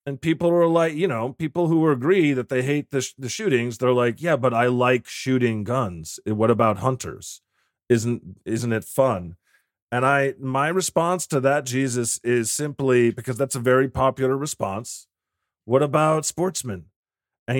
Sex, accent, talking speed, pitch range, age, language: male, American, 170 wpm, 130-180 Hz, 30-49, English